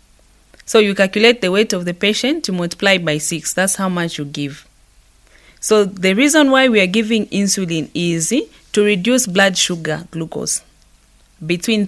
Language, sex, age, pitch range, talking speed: English, female, 30-49, 170-230 Hz, 160 wpm